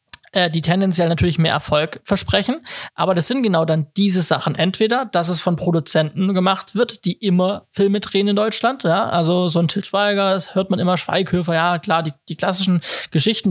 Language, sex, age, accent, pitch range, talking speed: German, male, 20-39, German, 160-190 Hz, 190 wpm